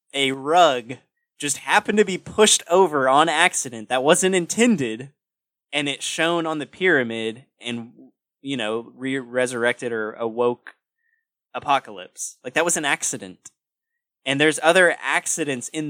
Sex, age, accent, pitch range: male, 20-39, American, 120-165 Hz